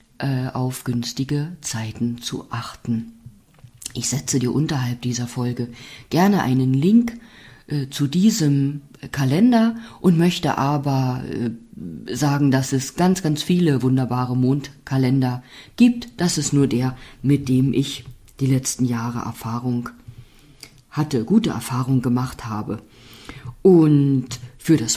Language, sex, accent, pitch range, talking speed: German, female, German, 120-155 Hz, 120 wpm